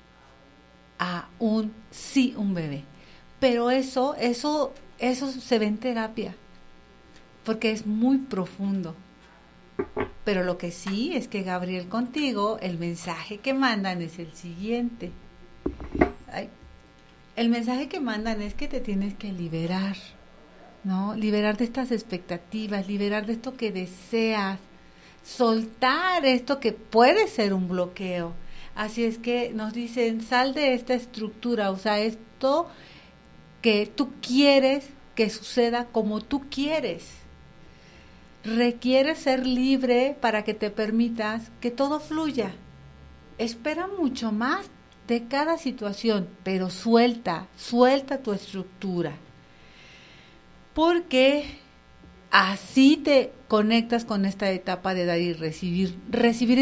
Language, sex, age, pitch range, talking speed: Spanish, female, 50-69, 185-250 Hz, 120 wpm